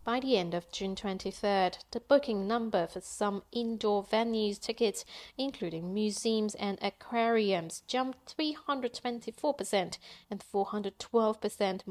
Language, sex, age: English, female, 30-49